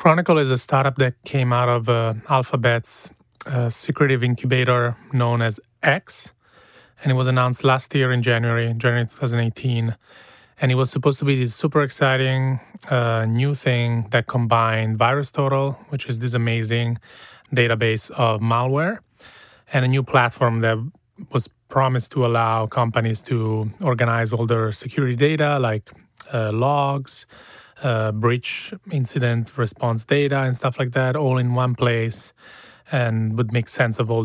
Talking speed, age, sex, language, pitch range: 150 wpm, 30-49, male, English, 115-135 Hz